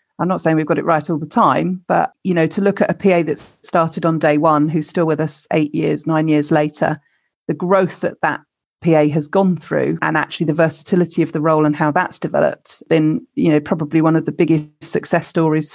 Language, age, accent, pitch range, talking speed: English, 40-59, British, 160-185 Hz, 230 wpm